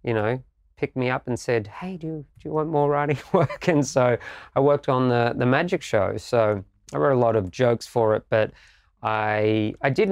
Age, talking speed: 20-39, 225 wpm